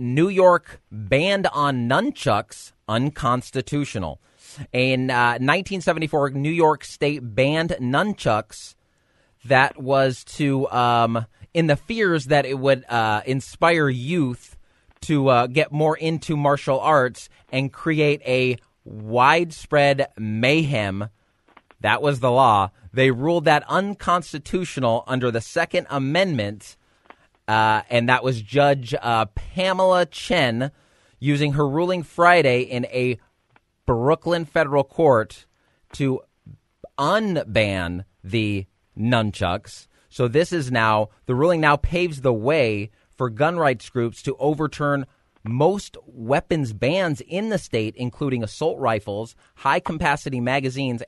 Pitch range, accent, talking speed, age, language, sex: 115-155 Hz, American, 115 wpm, 30-49, English, male